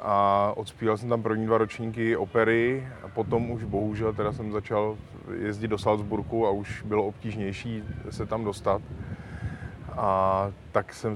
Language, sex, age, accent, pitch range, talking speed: Czech, male, 30-49, native, 100-110 Hz, 150 wpm